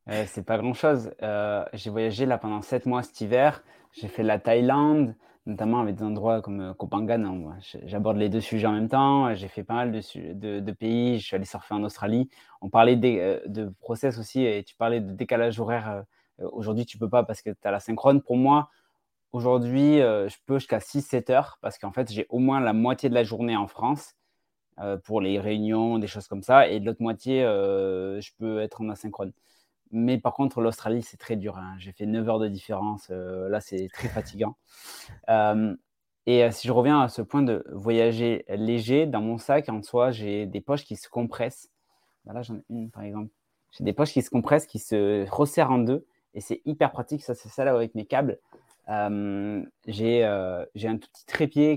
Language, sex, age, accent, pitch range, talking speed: French, male, 20-39, French, 105-125 Hz, 215 wpm